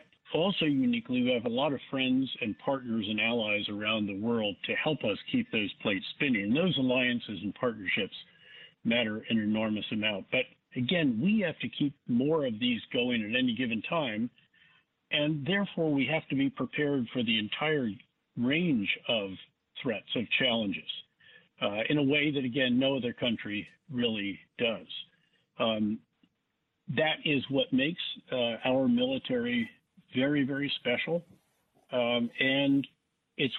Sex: male